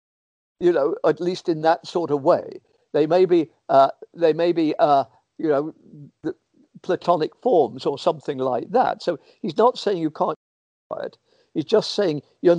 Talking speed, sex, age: 175 wpm, male, 60-79